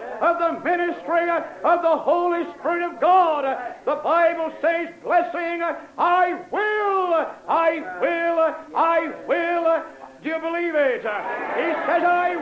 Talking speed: 125 wpm